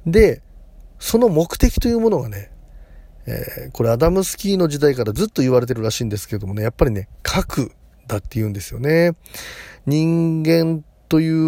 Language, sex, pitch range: Japanese, male, 110-160 Hz